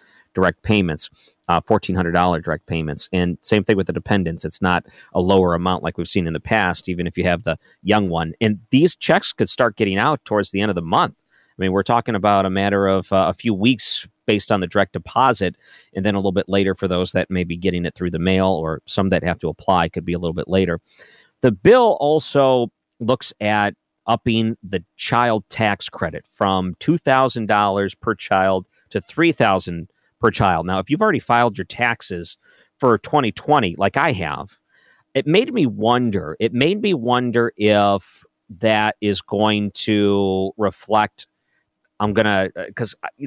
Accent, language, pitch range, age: American, English, 95-120 Hz, 40-59